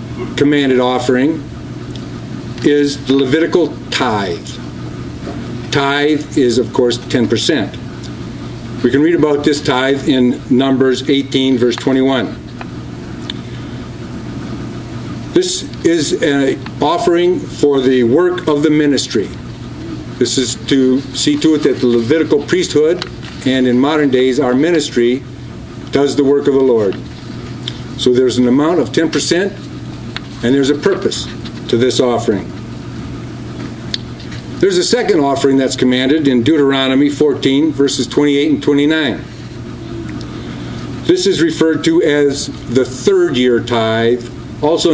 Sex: male